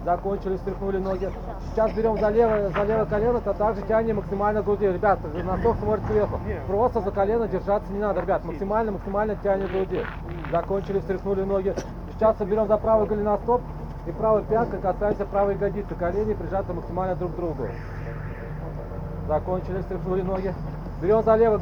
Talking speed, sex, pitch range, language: 155 wpm, male, 180-205 Hz, Russian